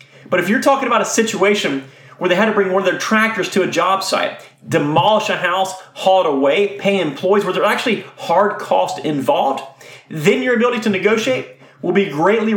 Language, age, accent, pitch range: English, 30-49, American, 155-220 Hz